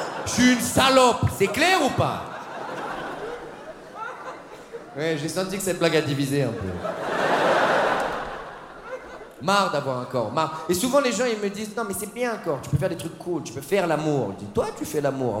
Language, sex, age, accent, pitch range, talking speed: French, male, 40-59, French, 155-240 Hz, 205 wpm